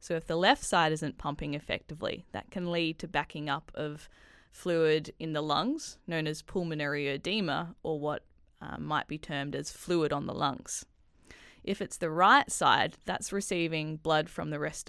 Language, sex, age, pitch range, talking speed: English, female, 10-29, 155-185 Hz, 180 wpm